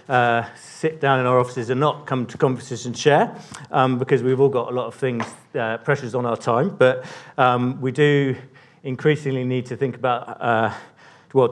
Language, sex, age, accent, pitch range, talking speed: English, male, 40-59, British, 115-140 Hz, 200 wpm